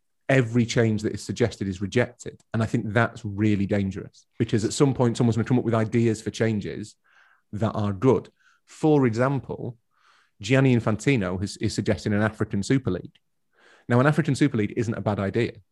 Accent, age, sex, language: British, 30-49, male, English